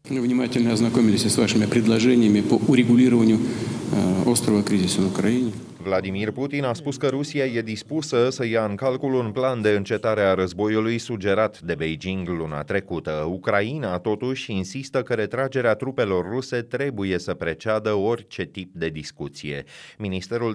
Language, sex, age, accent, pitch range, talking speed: Romanian, male, 30-49, native, 90-120 Hz, 145 wpm